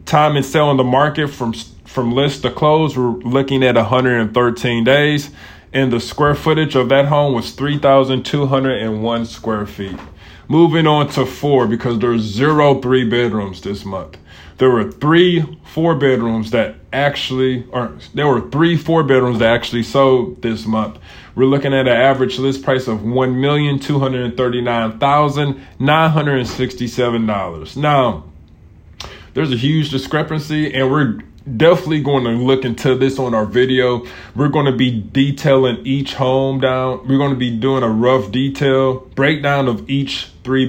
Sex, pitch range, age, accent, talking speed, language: male, 115-140 Hz, 20-39, American, 175 wpm, English